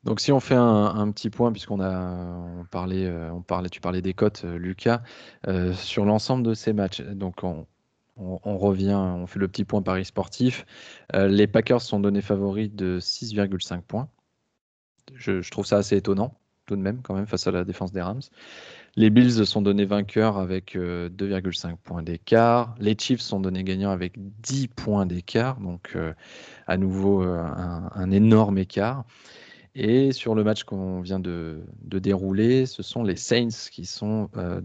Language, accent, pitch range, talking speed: French, French, 95-110 Hz, 180 wpm